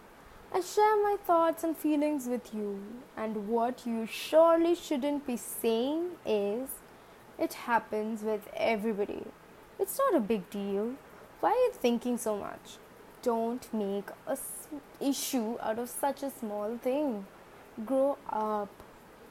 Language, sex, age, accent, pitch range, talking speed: Tamil, female, 20-39, native, 220-300 Hz, 135 wpm